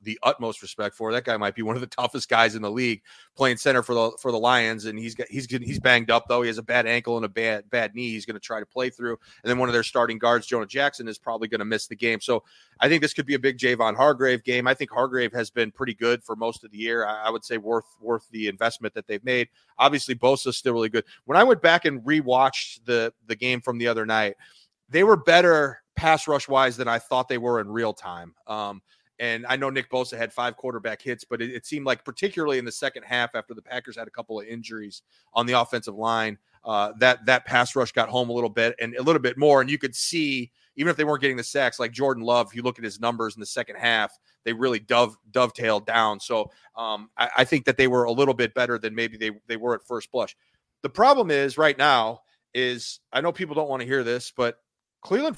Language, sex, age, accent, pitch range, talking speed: English, male, 30-49, American, 115-130 Hz, 265 wpm